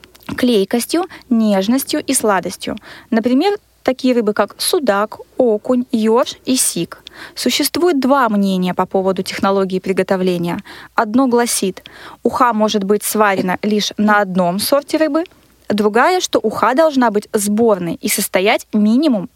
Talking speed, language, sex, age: 125 wpm, Russian, female, 20-39